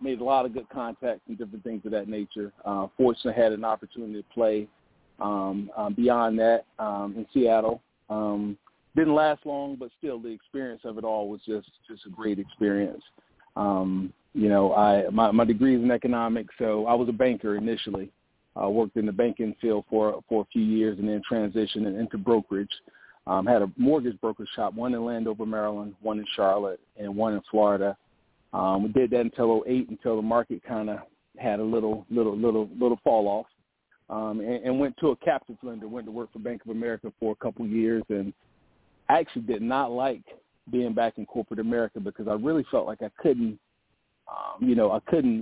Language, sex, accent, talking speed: English, male, American, 205 wpm